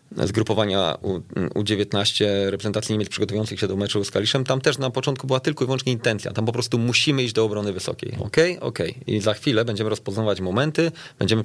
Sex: male